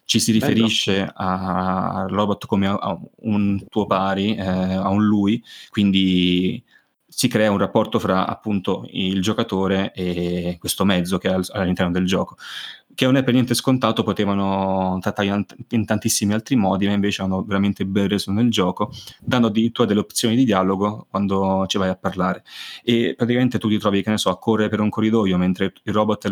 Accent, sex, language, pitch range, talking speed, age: native, male, Italian, 95-110 Hz, 180 wpm, 20-39